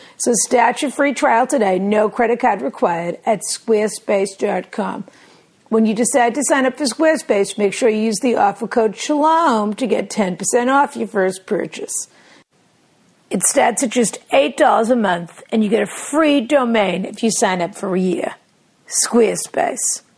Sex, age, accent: female, 50-69, American